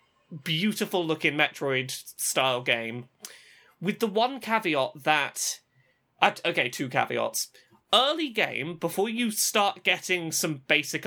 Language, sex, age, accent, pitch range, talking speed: English, male, 20-39, British, 140-215 Hz, 120 wpm